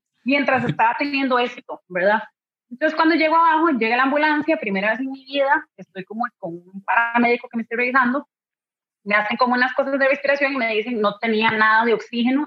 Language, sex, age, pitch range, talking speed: Spanish, female, 30-49, 225-290 Hz, 195 wpm